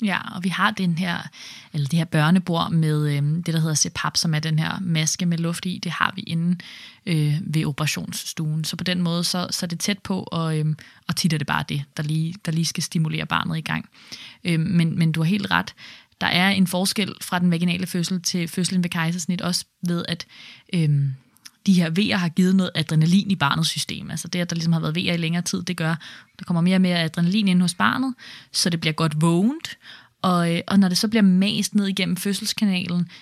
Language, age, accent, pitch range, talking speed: Danish, 20-39, native, 165-200 Hz, 230 wpm